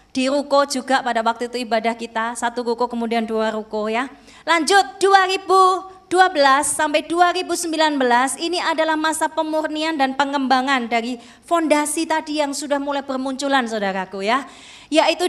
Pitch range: 255-320 Hz